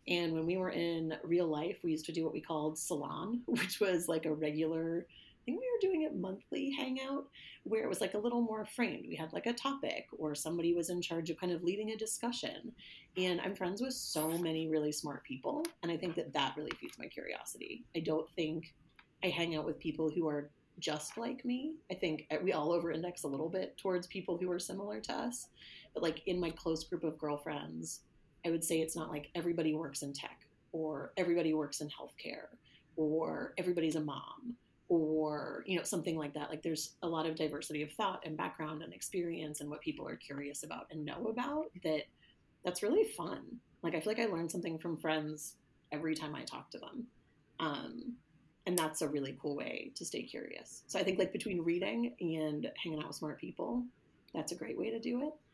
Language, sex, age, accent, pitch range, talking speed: English, female, 30-49, American, 155-195 Hz, 215 wpm